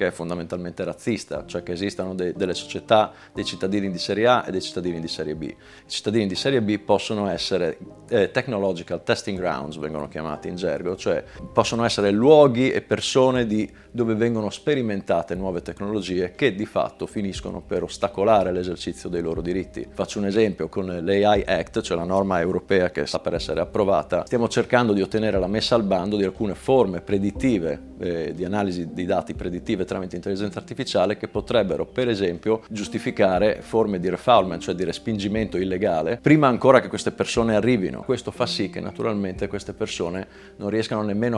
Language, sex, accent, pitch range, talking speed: Italian, male, native, 90-110 Hz, 175 wpm